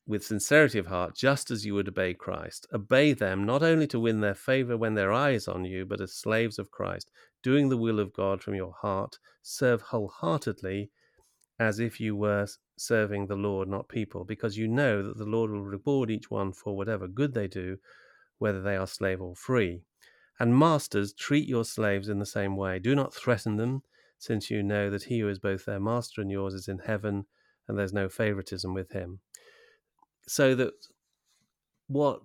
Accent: British